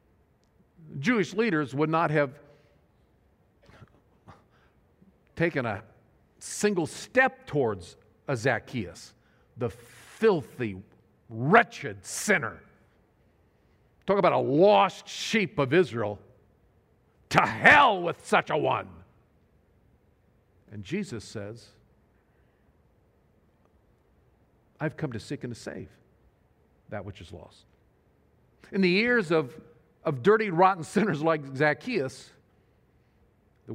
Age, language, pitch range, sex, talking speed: 50-69, English, 105-155 Hz, male, 95 wpm